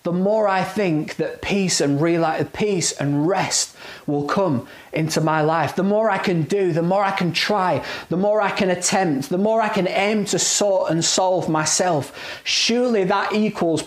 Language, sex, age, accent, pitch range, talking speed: English, male, 30-49, British, 165-205 Hz, 185 wpm